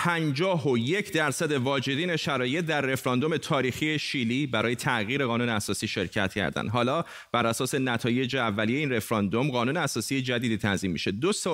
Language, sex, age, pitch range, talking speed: Persian, male, 30-49, 120-155 Hz, 155 wpm